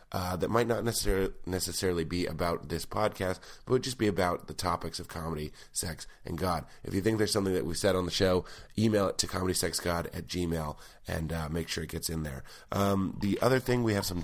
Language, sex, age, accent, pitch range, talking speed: English, male, 30-49, American, 80-100 Hz, 230 wpm